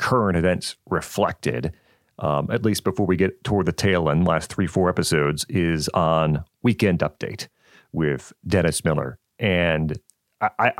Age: 40-59